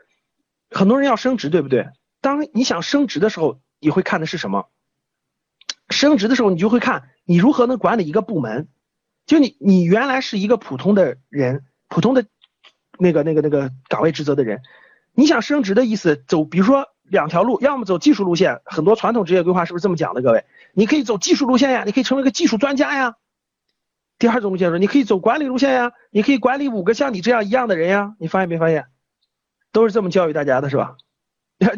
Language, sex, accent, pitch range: Chinese, male, native, 175-245 Hz